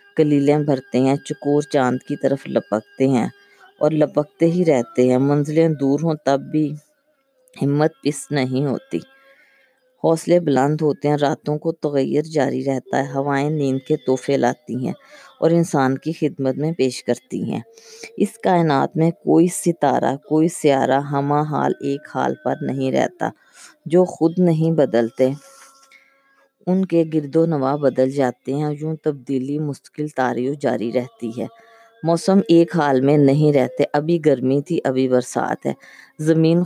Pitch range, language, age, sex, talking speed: 135-165 Hz, Urdu, 20-39, female, 150 wpm